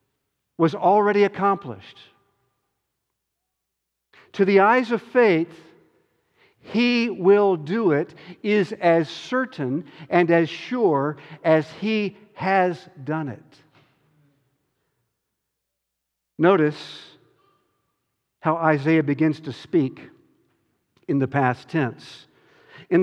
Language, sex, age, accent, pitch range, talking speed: English, male, 60-79, American, 140-190 Hz, 90 wpm